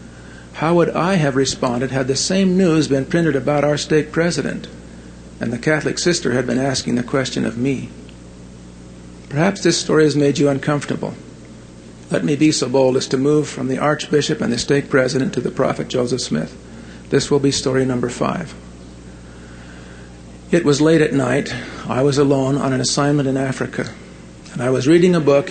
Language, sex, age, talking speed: English, male, 50-69, 185 wpm